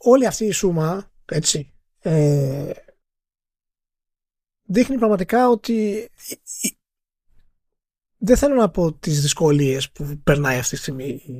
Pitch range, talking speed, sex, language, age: 145-215 Hz, 115 wpm, male, Greek, 30-49